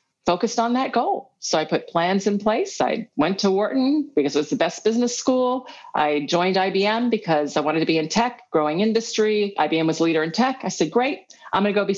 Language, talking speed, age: English, 235 wpm, 40-59